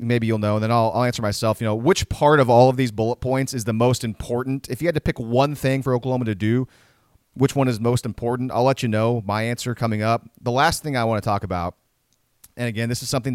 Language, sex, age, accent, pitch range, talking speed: English, male, 30-49, American, 115-145 Hz, 270 wpm